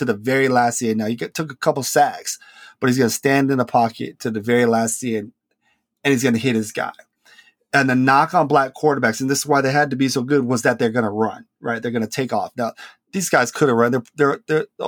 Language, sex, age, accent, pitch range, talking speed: English, male, 30-49, American, 115-135 Hz, 275 wpm